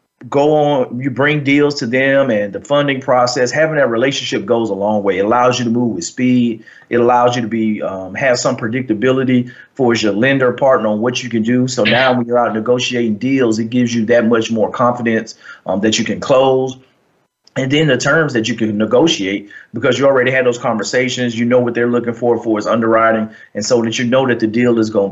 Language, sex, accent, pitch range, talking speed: English, male, American, 110-130 Hz, 225 wpm